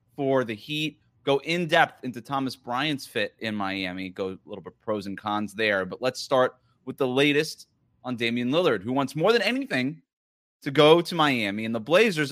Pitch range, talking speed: 120-145 Hz, 195 wpm